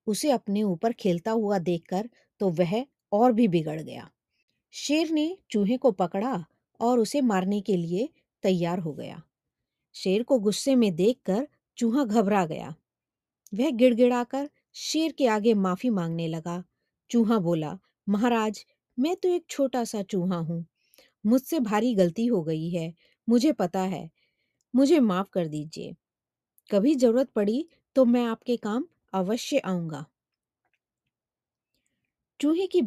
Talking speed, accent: 135 wpm, native